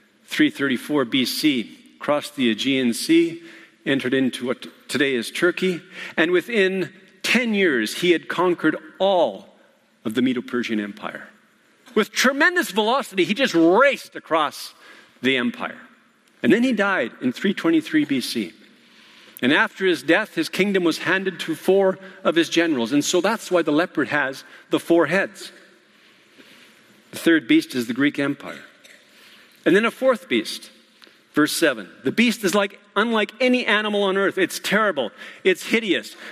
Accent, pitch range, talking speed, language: American, 160-230 Hz, 150 wpm, English